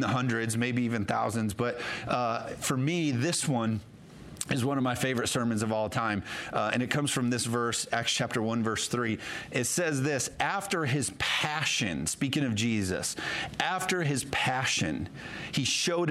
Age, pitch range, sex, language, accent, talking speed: 40-59, 115-145 Hz, male, English, American, 170 wpm